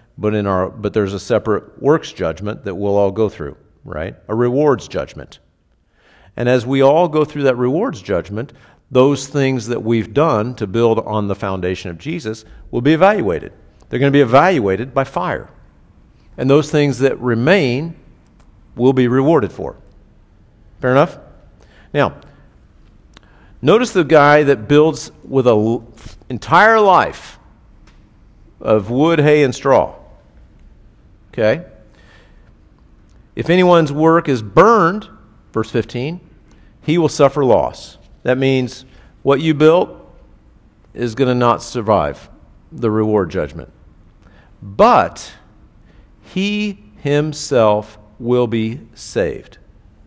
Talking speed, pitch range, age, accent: 130 wpm, 105-140 Hz, 50-69, American